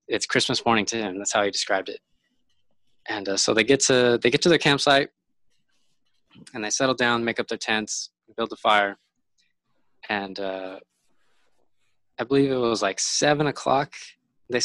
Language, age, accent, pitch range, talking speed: English, 20-39, American, 100-120 Hz, 170 wpm